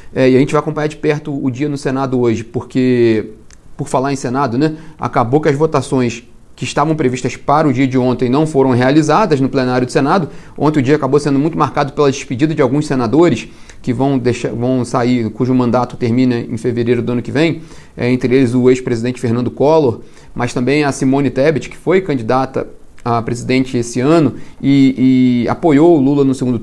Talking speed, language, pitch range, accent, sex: 195 wpm, Portuguese, 125-145 Hz, Brazilian, male